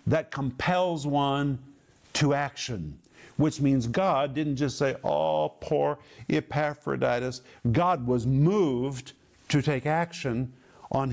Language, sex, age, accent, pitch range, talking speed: English, male, 50-69, American, 125-160 Hz, 115 wpm